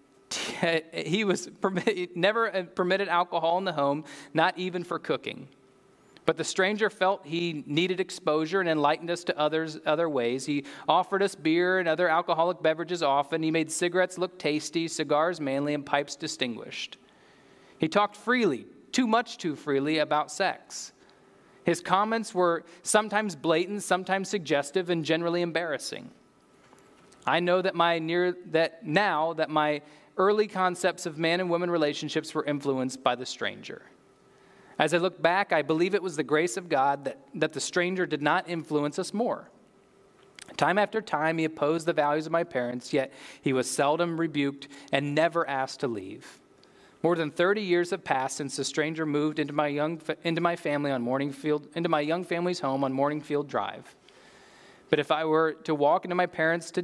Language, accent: English, American